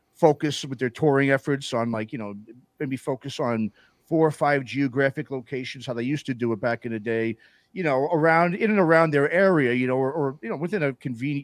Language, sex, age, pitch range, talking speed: English, male, 40-59, 120-150 Hz, 230 wpm